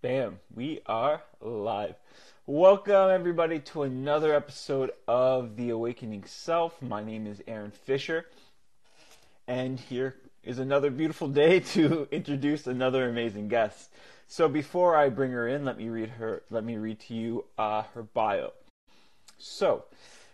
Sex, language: male, English